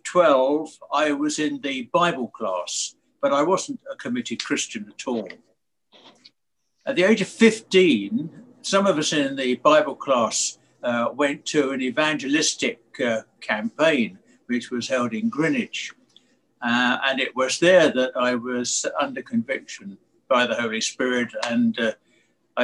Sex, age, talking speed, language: male, 60-79, 145 wpm, English